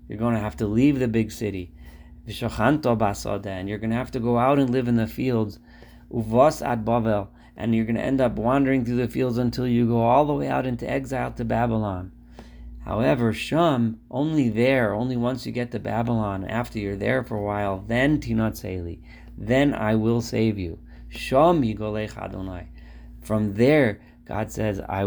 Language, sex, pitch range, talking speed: English, male, 95-125 Hz, 175 wpm